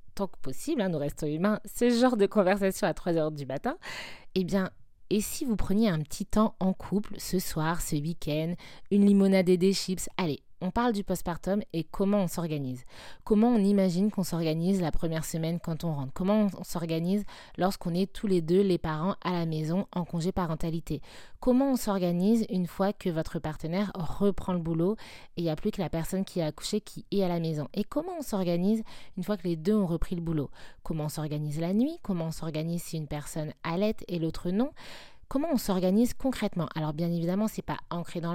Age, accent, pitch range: 20-39, French, 165-205 Hz